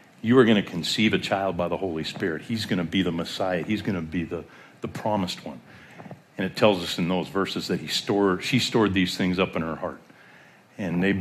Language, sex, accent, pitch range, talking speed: English, male, American, 95-140 Hz, 240 wpm